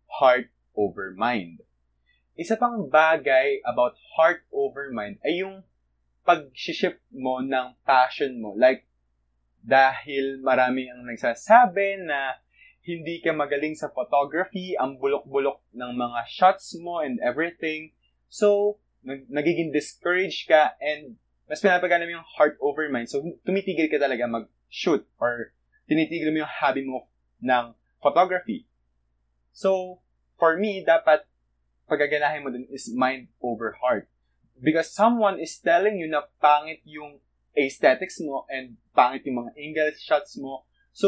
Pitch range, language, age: 120-180 Hz, English, 20-39